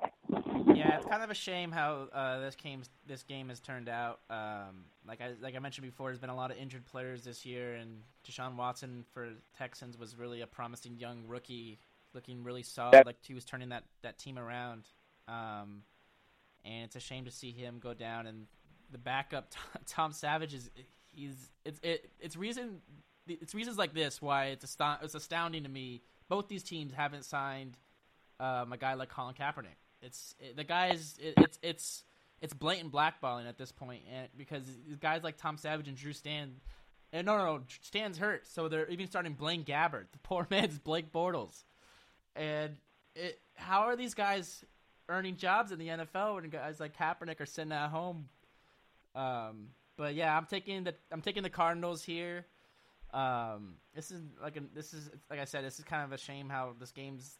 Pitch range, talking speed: 125-160 Hz, 195 wpm